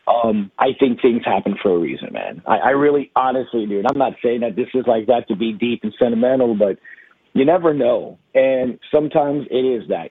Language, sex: English, male